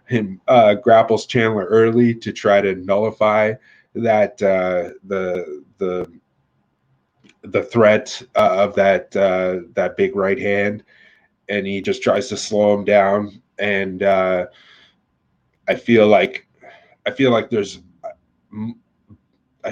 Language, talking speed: English, 120 wpm